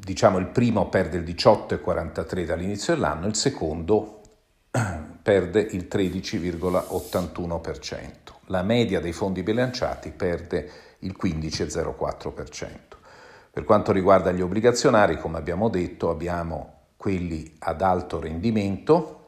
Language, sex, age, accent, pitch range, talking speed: Italian, male, 50-69, native, 85-110 Hz, 105 wpm